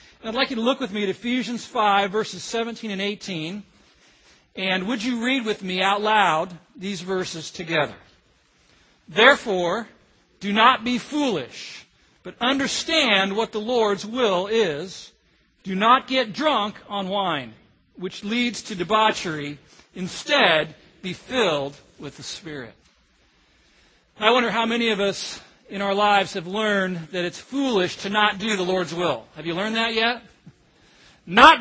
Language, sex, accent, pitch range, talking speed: English, male, American, 190-245 Hz, 150 wpm